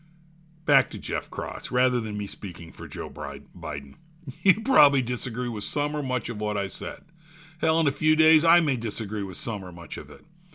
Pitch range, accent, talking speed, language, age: 135-165 Hz, American, 205 wpm, English, 50-69